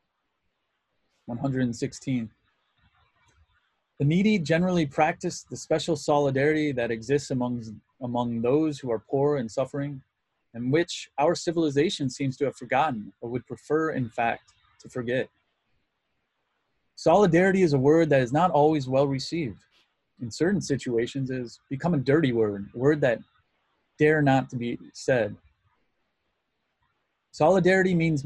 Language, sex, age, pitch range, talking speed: English, male, 20-39, 120-155 Hz, 130 wpm